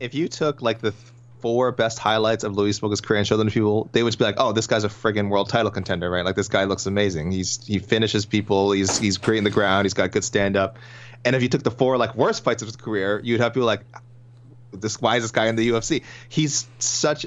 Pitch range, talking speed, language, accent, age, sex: 105-125 Hz, 265 wpm, English, American, 30-49, male